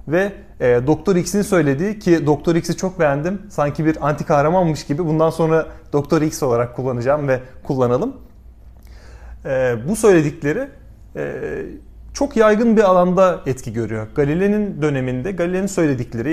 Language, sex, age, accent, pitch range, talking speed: Turkish, male, 30-49, native, 145-195 Hz, 135 wpm